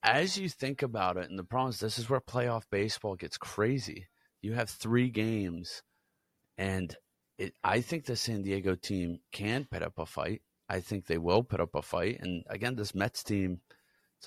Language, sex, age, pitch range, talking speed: English, male, 30-49, 90-110 Hz, 195 wpm